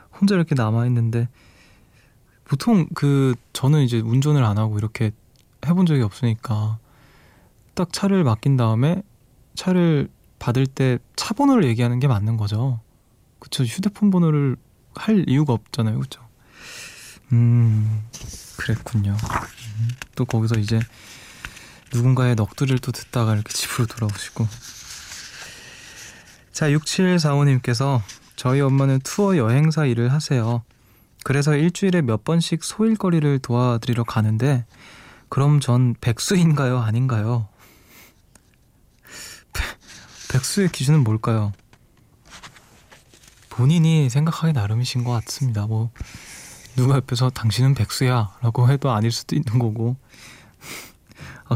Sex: male